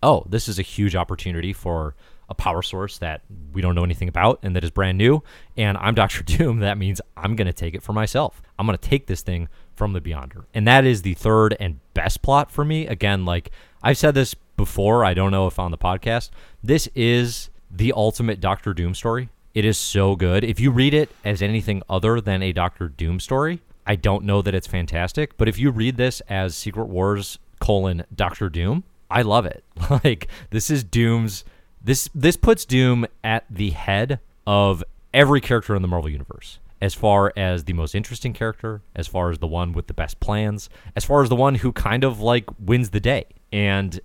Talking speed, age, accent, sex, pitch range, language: 215 wpm, 30-49, American, male, 90-115 Hz, English